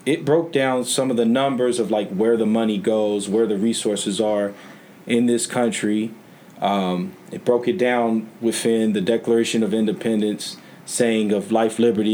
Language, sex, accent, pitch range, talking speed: English, male, American, 110-130 Hz, 170 wpm